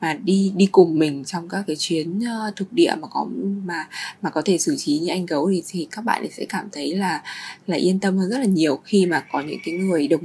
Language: Vietnamese